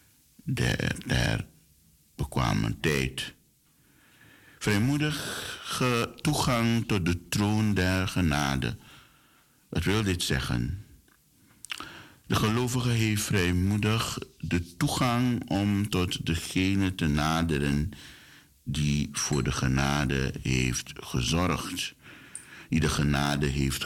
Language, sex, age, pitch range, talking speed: Dutch, male, 60-79, 75-105 Hz, 90 wpm